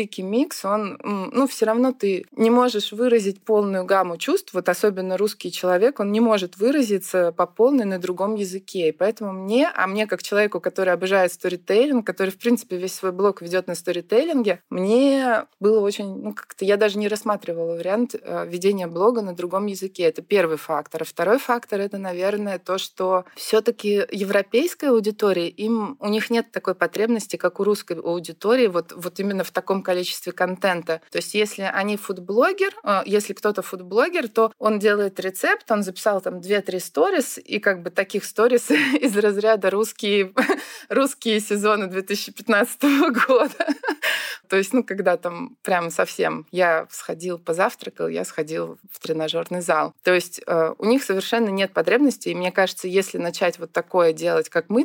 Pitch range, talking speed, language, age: 180-215 Hz, 165 wpm, Russian, 20-39